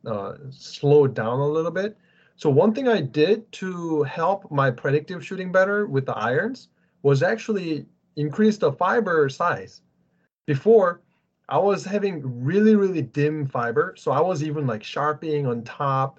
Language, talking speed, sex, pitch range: English, 155 wpm, male, 130-175 Hz